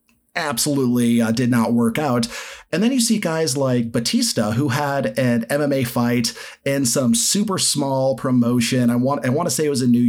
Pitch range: 120-150 Hz